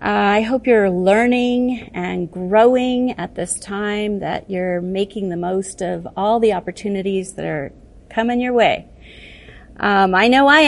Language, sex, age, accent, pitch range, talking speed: English, female, 40-59, American, 190-235 Hz, 155 wpm